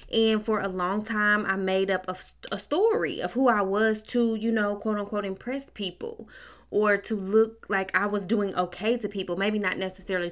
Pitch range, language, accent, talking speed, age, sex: 190-235 Hz, English, American, 190 wpm, 20-39, female